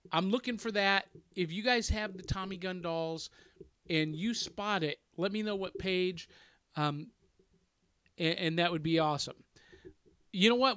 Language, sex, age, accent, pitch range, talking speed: English, male, 40-59, American, 160-215 Hz, 175 wpm